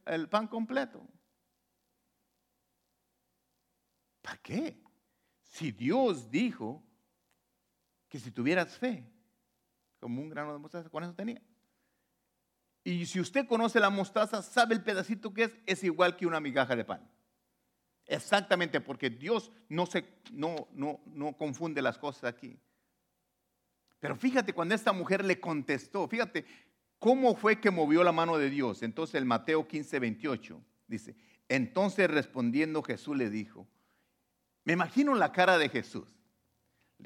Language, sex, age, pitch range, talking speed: English, male, 50-69, 145-225 Hz, 135 wpm